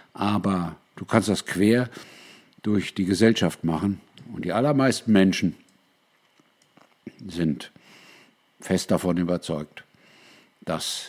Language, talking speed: German, 95 wpm